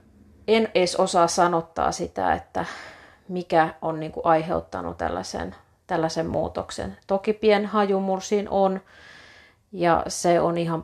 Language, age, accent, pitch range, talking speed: Finnish, 30-49, native, 160-190 Hz, 110 wpm